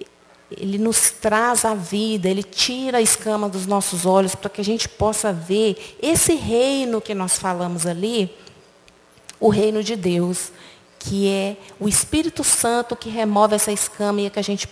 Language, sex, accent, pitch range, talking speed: Portuguese, female, Brazilian, 180-220 Hz, 170 wpm